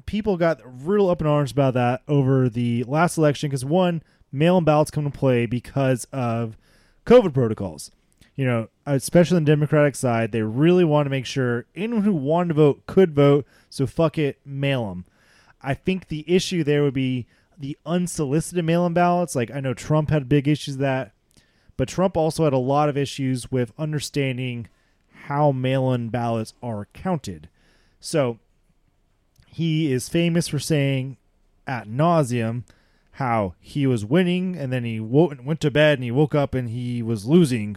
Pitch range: 120-155 Hz